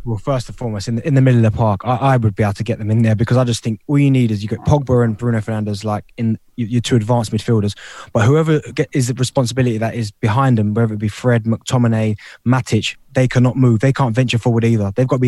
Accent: British